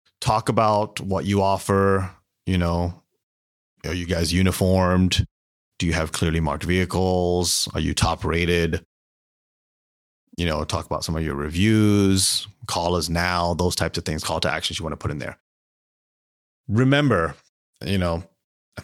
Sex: male